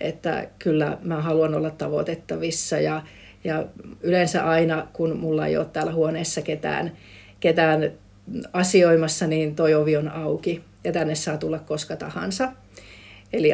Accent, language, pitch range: native, Finnish, 155-180 Hz